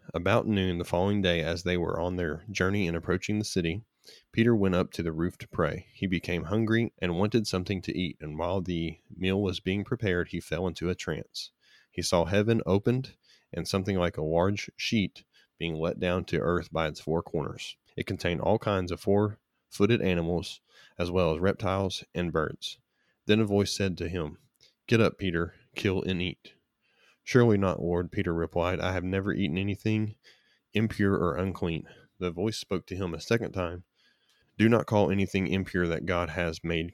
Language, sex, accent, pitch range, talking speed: English, male, American, 85-100 Hz, 190 wpm